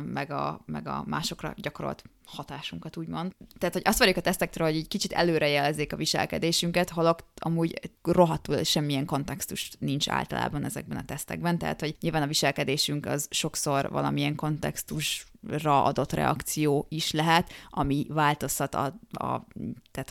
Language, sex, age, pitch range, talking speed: Hungarian, female, 20-39, 145-185 Hz, 135 wpm